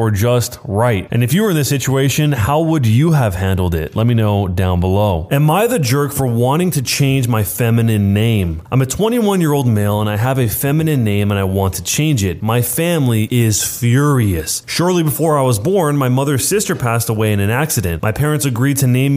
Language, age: English, 20-39